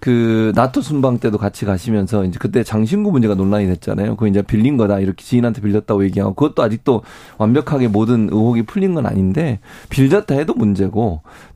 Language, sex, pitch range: Korean, male, 105-130 Hz